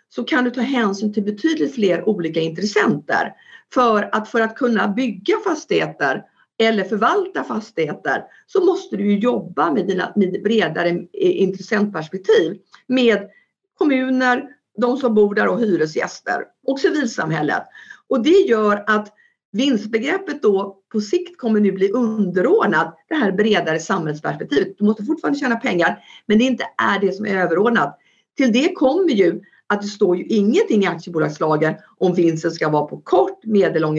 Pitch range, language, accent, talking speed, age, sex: 185-260 Hz, Swedish, native, 155 wpm, 50-69, female